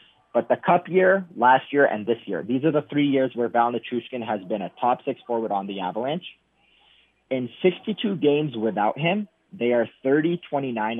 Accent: American